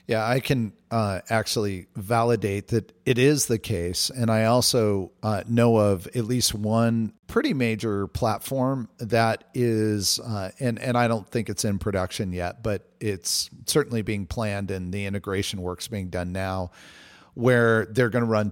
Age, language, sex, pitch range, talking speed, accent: 40-59, English, male, 100-120 Hz, 170 wpm, American